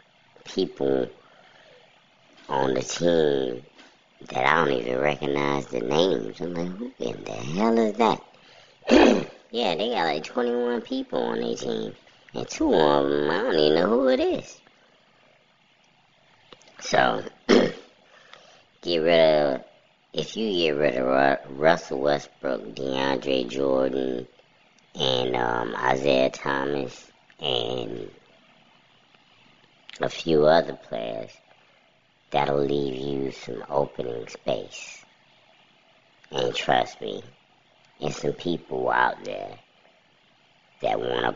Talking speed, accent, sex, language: 115 wpm, American, male, English